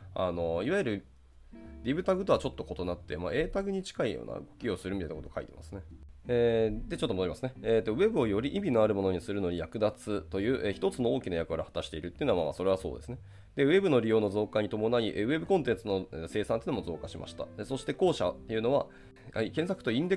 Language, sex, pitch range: Japanese, male, 90-135 Hz